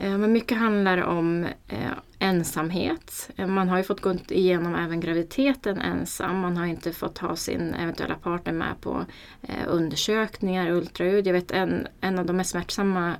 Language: Swedish